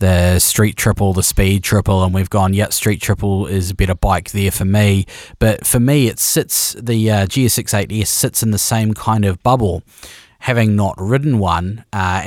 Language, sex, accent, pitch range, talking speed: English, male, Australian, 95-115 Hz, 195 wpm